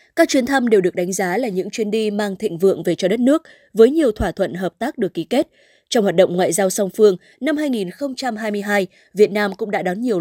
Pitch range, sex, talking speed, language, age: 195-250 Hz, female, 245 wpm, Vietnamese, 20-39